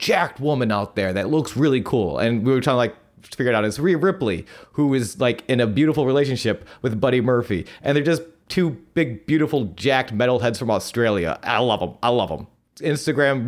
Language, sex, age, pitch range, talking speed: English, male, 30-49, 115-155 Hz, 215 wpm